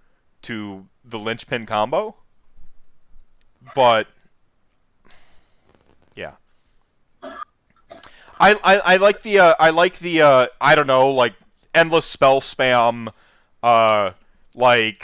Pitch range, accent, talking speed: 120-150 Hz, American, 110 wpm